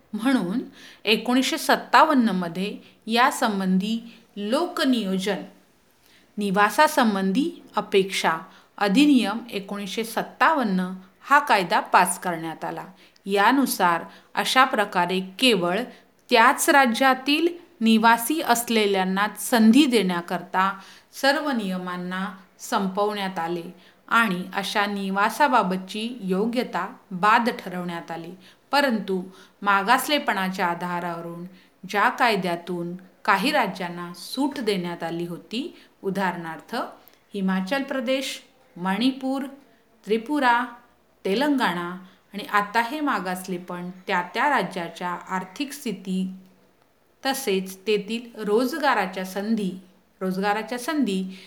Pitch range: 185-250 Hz